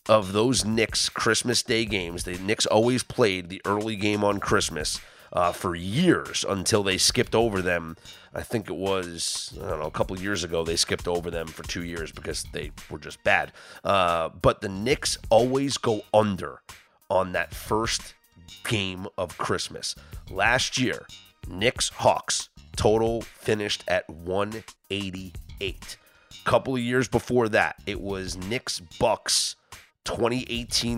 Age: 30-49